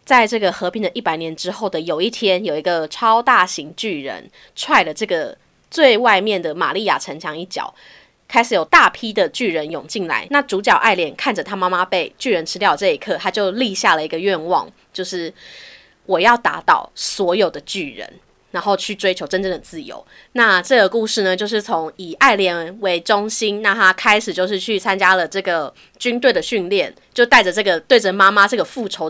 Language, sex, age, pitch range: Chinese, female, 20-39, 180-235 Hz